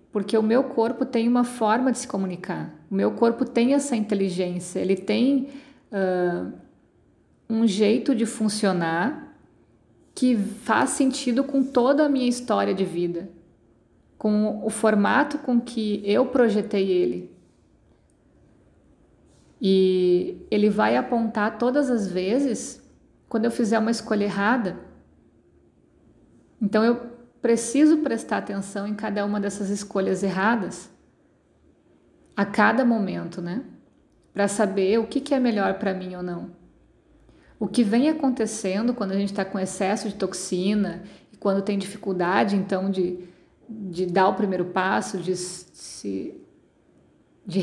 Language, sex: Portuguese, female